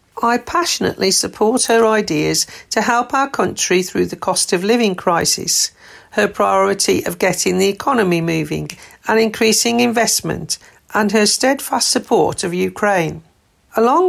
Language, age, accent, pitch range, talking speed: English, 50-69, British, 180-235 Hz, 135 wpm